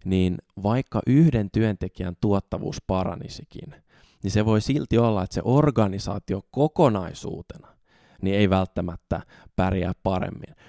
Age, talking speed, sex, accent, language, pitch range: 20-39, 110 wpm, male, native, Finnish, 95-115 Hz